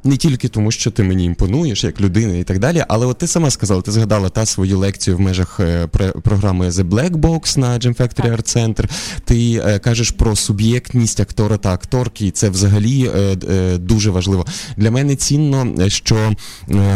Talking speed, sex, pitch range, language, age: 175 wpm, male, 100-135 Hz, Ukrainian, 20-39